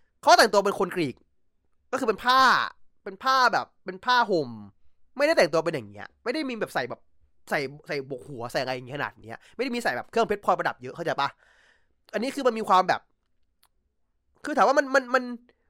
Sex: male